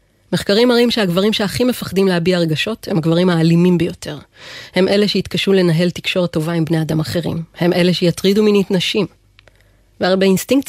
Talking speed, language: 155 wpm, Hebrew